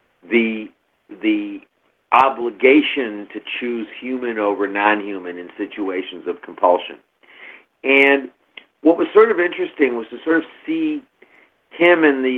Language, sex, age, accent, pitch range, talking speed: English, male, 50-69, American, 120-195 Hz, 125 wpm